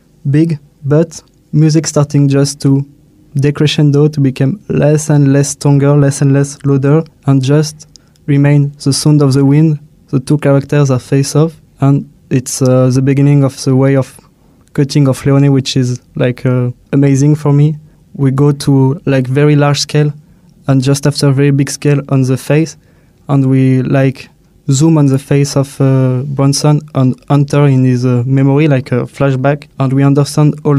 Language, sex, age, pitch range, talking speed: English, male, 20-39, 135-150 Hz, 175 wpm